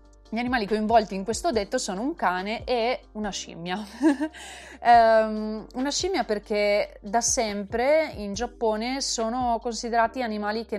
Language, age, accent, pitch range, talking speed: Italian, 30-49, native, 180-215 Hz, 130 wpm